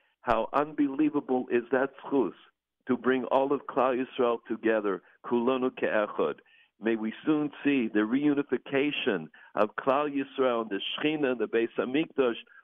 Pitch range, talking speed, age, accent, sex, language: 120-145 Hz, 135 wpm, 60-79, American, male, English